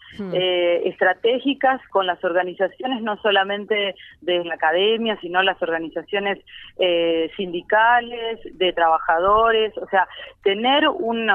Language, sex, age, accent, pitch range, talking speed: Spanish, female, 30-49, Argentinian, 175-225 Hz, 110 wpm